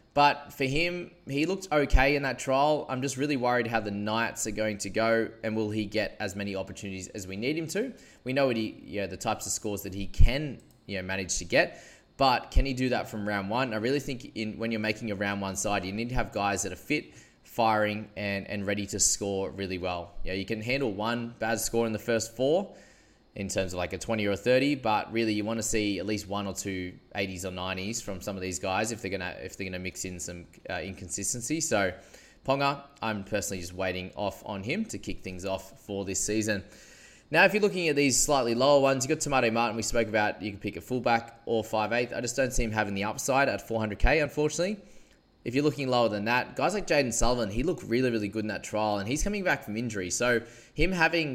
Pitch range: 100-125 Hz